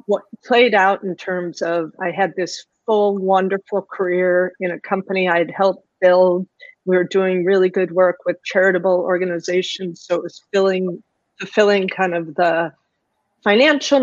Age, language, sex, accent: 40-59, English, female, American